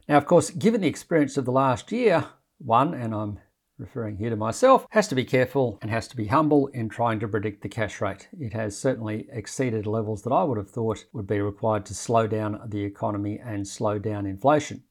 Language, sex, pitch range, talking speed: English, male, 105-135 Hz, 220 wpm